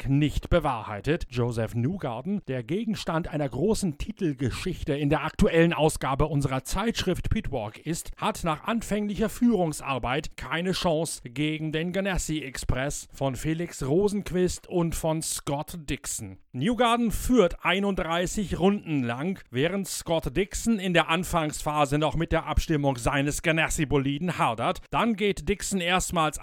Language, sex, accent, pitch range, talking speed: German, male, German, 135-180 Hz, 130 wpm